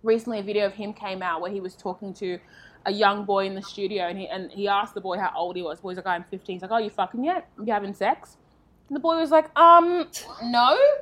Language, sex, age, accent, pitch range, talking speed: English, female, 20-39, Australian, 195-270 Hz, 280 wpm